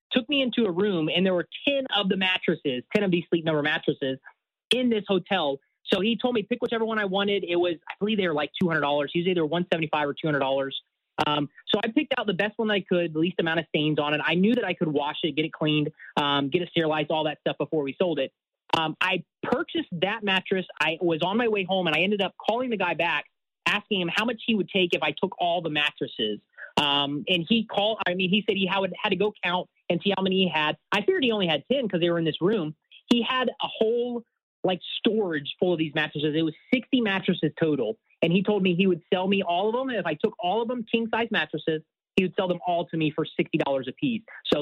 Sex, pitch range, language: male, 155-210 Hz, English